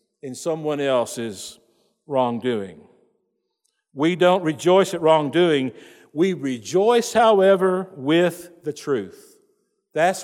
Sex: male